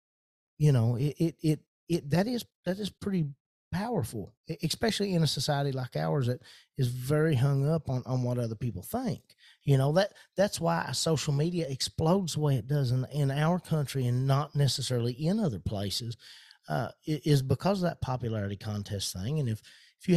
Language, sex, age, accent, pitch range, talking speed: English, male, 40-59, American, 120-160 Hz, 185 wpm